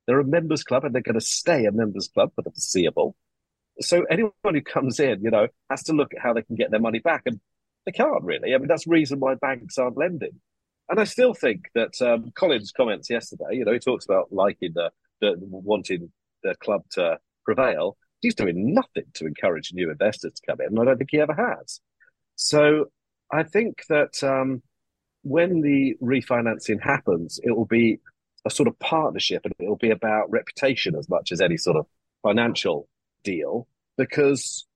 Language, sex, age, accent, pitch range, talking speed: English, male, 40-59, British, 105-145 Hz, 200 wpm